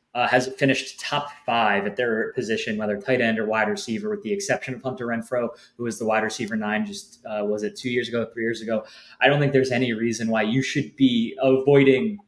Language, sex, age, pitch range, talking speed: English, male, 20-39, 115-170 Hz, 230 wpm